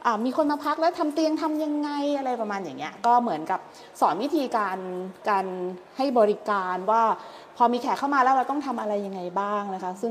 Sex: female